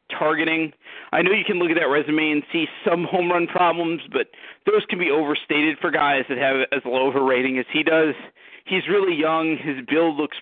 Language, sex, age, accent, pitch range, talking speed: English, male, 30-49, American, 135-170 Hz, 220 wpm